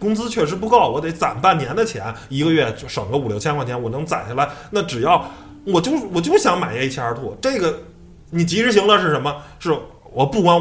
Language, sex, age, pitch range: Chinese, male, 20-39, 115-165 Hz